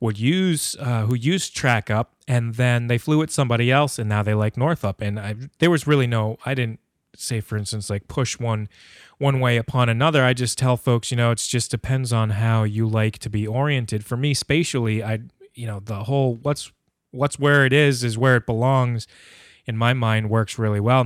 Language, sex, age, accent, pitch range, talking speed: English, male, 20-39, American, 110-135 Hz, 215 wpm